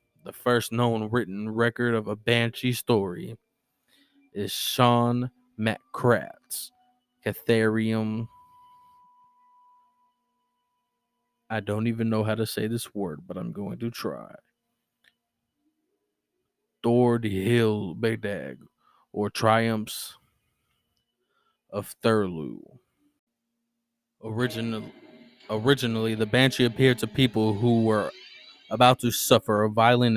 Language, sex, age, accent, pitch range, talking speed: English, male, 20-39, American, 110-125 Hz, 95 wpm